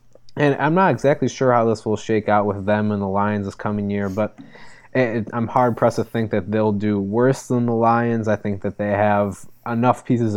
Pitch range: 100-115 Hz